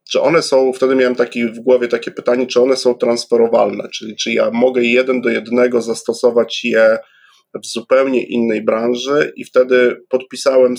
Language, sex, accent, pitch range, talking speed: Polish, male, native, 120-140 Hz, 165 wpm